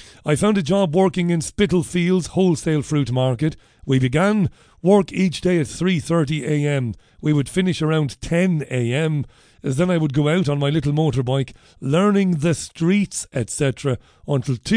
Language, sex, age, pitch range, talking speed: English, male, 40-59, 135-170 Hz, 145 wpm